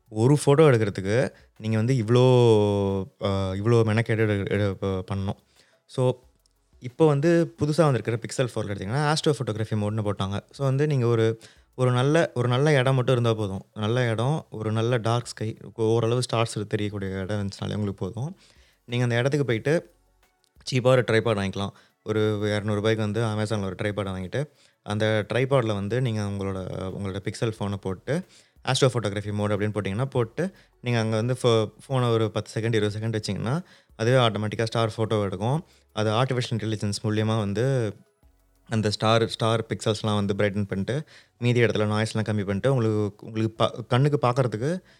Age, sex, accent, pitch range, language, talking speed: 20-39, male, native, 105-125 Hz, Tamil, 155 wpm